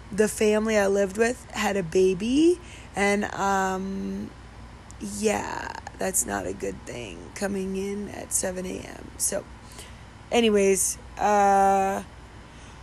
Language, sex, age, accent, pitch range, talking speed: English, female, 20-39, American, 195-225 Hz, 110 wpm